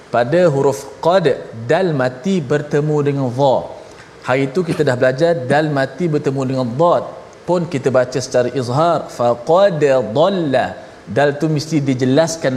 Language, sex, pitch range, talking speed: Malayalam, male, 135-165 Hz, 145 wpm